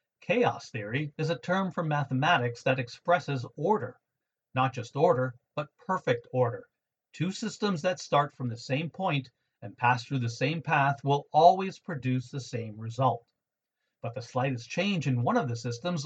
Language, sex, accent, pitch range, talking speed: English, male, American, 125-165 Hz, 170 wpm